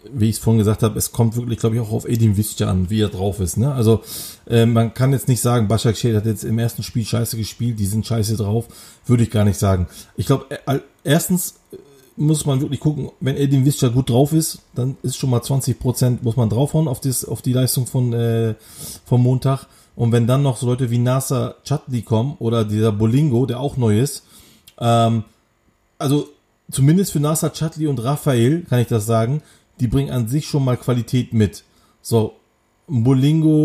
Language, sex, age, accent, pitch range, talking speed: German, male, 30-49, German, 115-135 Hz, 210 wpm